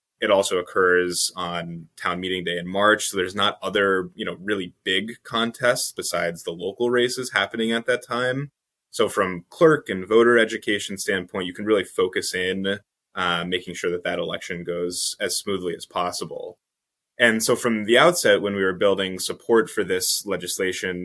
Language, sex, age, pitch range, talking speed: English, male, 10-29, 90-115 Hz, 175 wpm